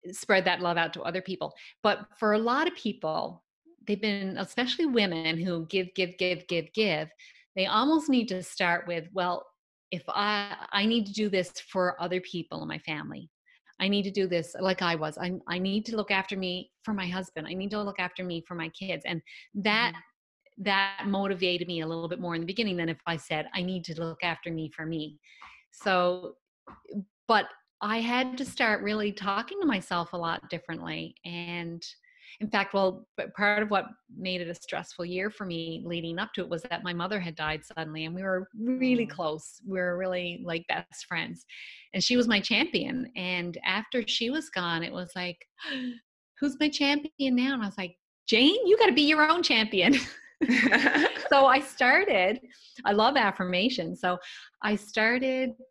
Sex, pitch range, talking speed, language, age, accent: female, 175-235 Hz, 195 wpm, English, 30-49, American